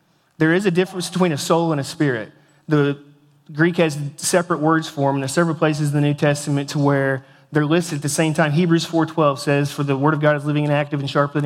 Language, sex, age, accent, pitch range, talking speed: English, male, 40-59, American, 140-160 Hz, 245 wpm